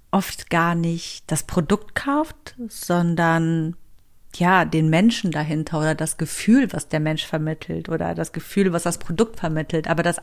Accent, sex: German, female